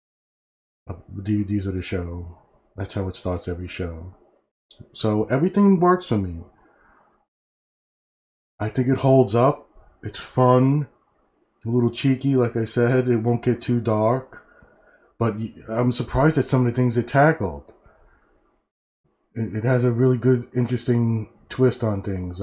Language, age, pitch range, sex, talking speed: English, 30-49, 100-125 Hz, male, 140 wpm